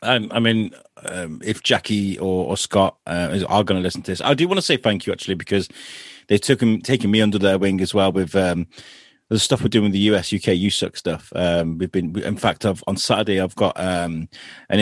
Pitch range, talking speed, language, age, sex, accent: 95-115 Hz, 245 wpm, English, 30-49, male, British